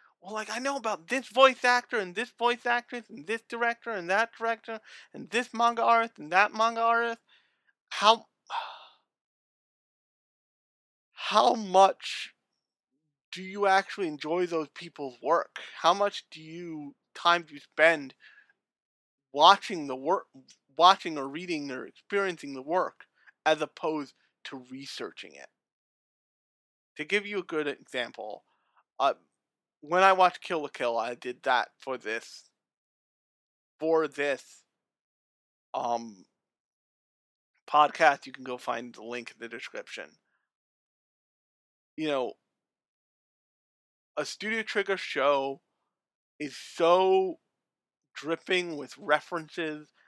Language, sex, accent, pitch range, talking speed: English, male, American, 145-220 Hz, 120 wpm